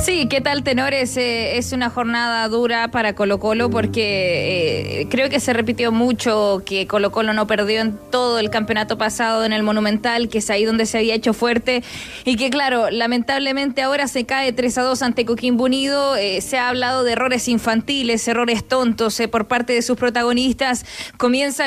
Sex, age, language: female, 20-39, Spanish